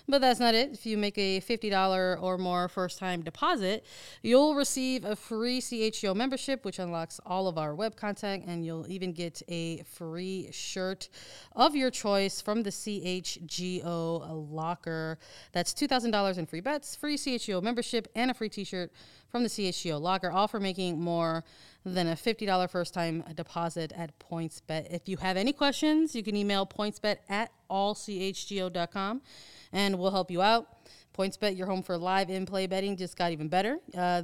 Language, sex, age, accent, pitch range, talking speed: English, female, 30-49, American, 180-215 Hz, 165 wpm